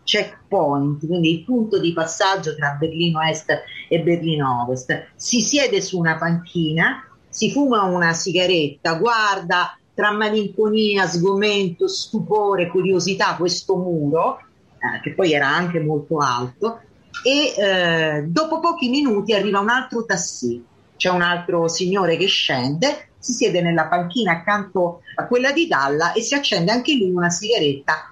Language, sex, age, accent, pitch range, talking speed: Italian, female, 40-59, native, 165-230 Hz, 145 wpm